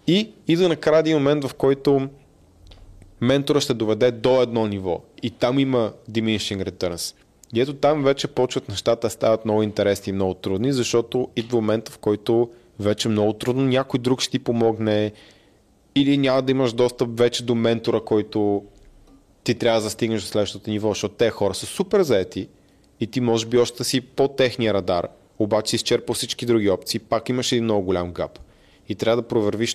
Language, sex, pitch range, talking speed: Bulgarian, male, 105-130 Hz, 190 wpm